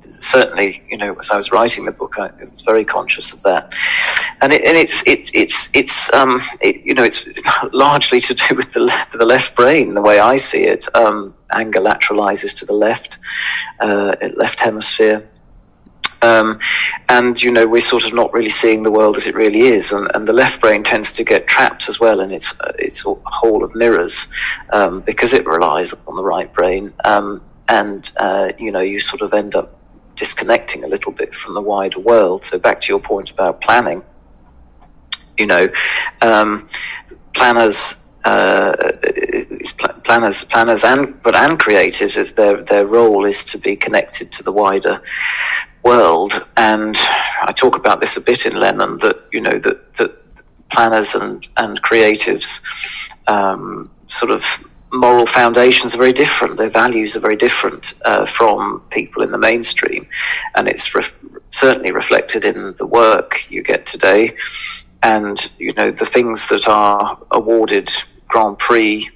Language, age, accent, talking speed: English, 40-59, British, 170 wpm